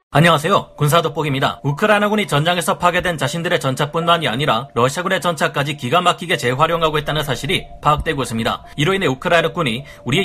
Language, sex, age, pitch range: Korean, male, 30-49, 135-175 Hz